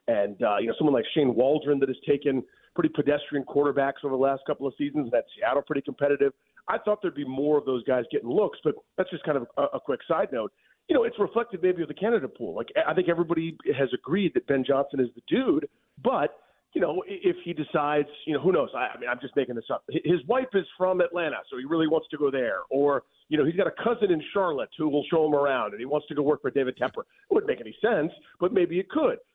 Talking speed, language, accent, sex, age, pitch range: 260 wpm, English, American, male, 40-59, 135-185 Hz